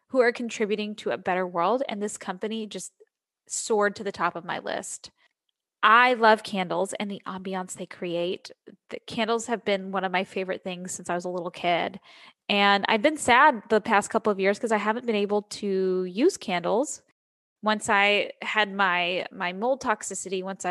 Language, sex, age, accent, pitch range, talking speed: English, female, 10-29, American, 185-220 Hz, 190 wpm